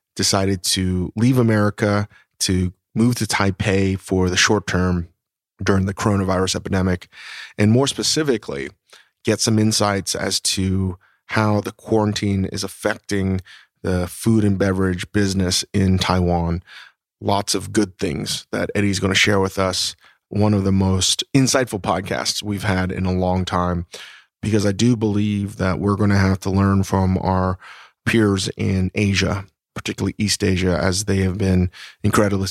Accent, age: American, 30-49